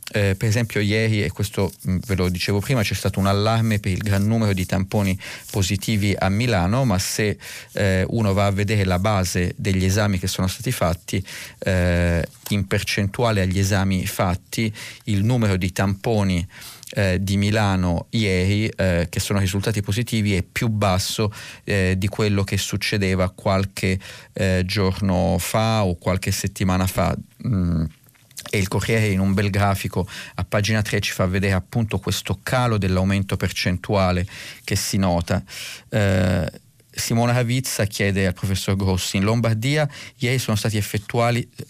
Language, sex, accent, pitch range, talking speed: Italian, male, native, 95-115 Hz, 155 wpm